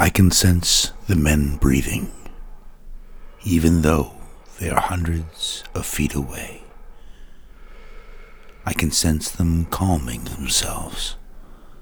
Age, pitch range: 60-79, 75-90 Hz